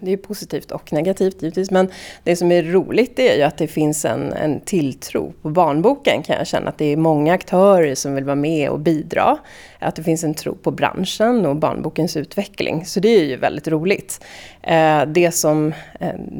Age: 30-49